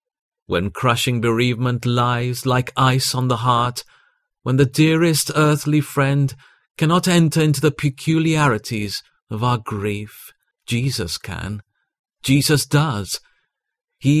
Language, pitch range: English, 115-145 Hz